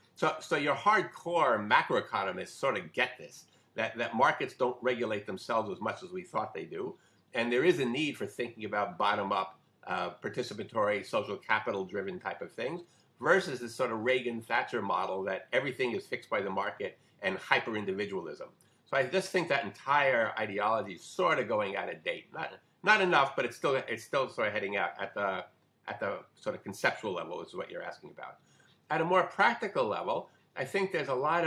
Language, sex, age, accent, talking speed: English, male, 50-69, American, 195 wpm